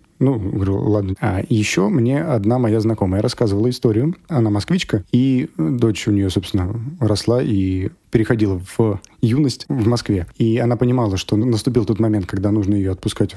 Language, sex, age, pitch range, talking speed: Russian, male, 30-49, 105-125 Hz, 160 wpm